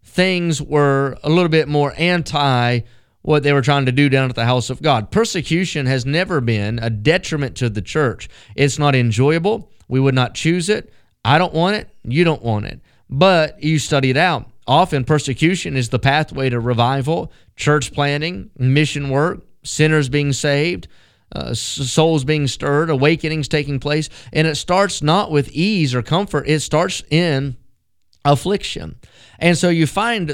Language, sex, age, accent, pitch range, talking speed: English, male, 30-49, American, 135-165 Hz, 170 wpm